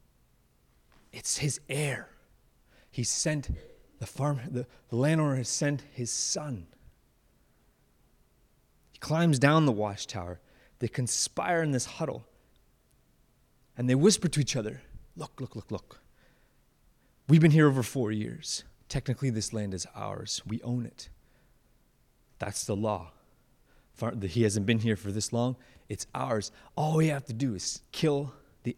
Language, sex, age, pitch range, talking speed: English, male, 30-49, 105-145 Hz, 140 wpm